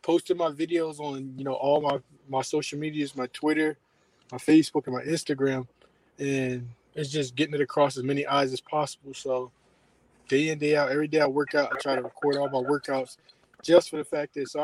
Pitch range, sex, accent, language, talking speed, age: 130-145 Hz, male, American, English, 215 wpm, 20-39